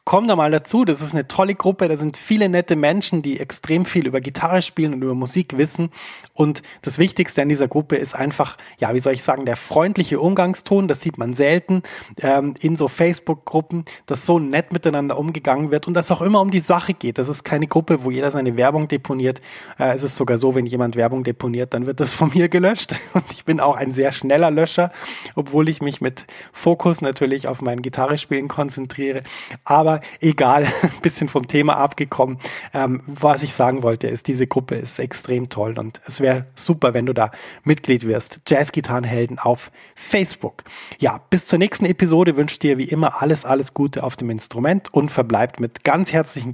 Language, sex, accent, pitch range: German, male, German, 130-165 Hz